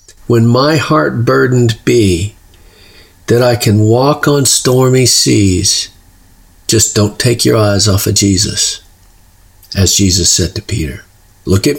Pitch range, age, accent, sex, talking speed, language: 100-125 Hz, 50-69, American, male, 135 wpm, English